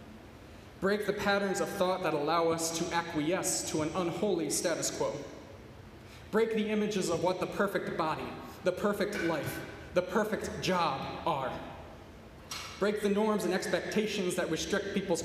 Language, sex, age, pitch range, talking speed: English, male, 30-49, 130-180 Hz, 150 wpm